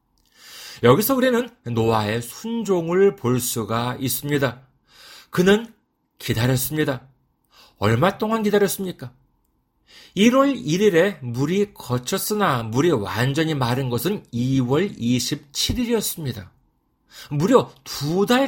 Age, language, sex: 40-59, Korean, male